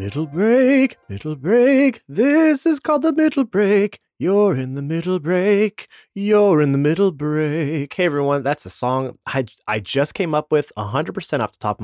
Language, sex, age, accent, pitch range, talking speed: English, male, 30-49, American, 125-195 Hz, 180 wpm